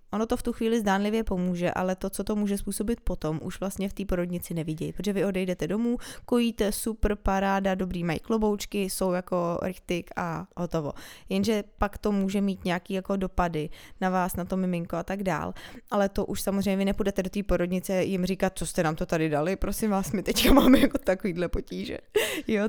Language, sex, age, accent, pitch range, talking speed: Czech, female, 20-39, native, 185-215 Hz, 205 wpm